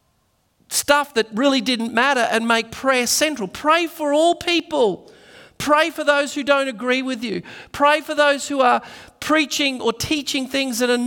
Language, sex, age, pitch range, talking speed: English, male, 40-59, 160-250 Hz, 175 wpm